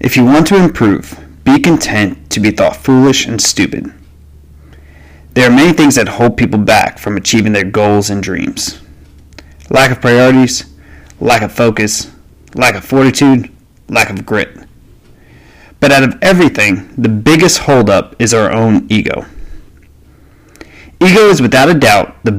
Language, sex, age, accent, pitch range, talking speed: English, male, 30-49, American, 95-135 Hz, 145 wpm